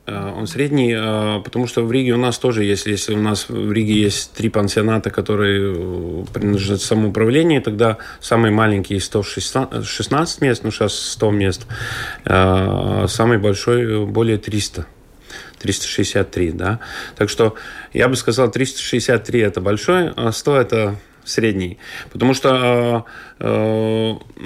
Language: Russian